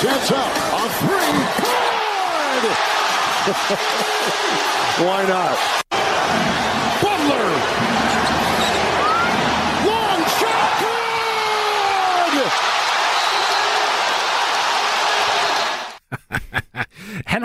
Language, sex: Danish, male